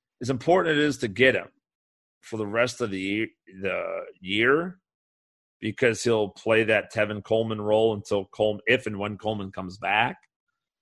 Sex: male